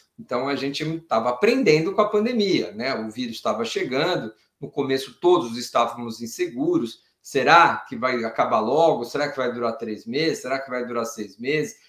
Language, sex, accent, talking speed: Portuguese, male, Brazilian, 175 wpm